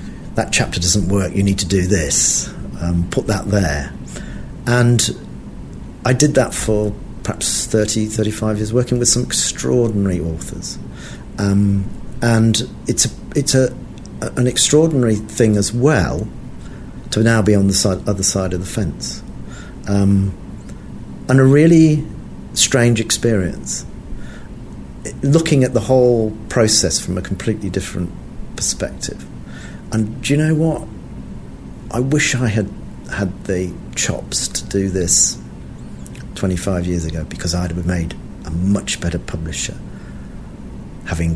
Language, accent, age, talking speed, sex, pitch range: English, British, 50-69, 135 wpm, male, 80-115 Hz